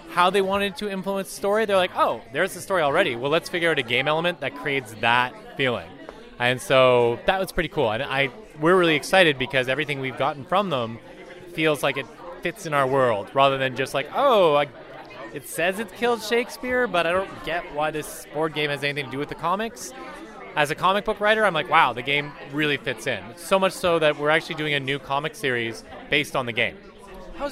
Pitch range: 135-175 Hz